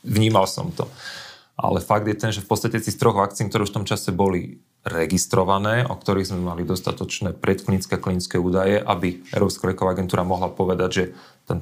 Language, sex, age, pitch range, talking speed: Slovak, male, 30-49, 95-115 Hz, 190 wpm